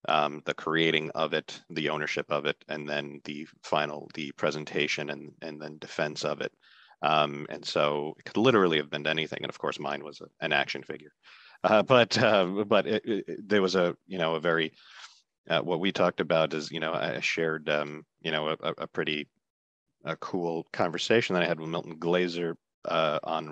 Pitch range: 75-85 Hz